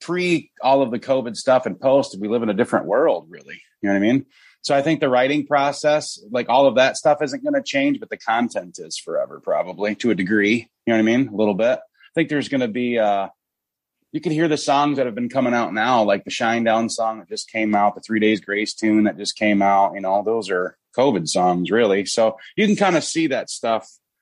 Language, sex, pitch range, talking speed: English, male, 105-140 Hz, 260 wpm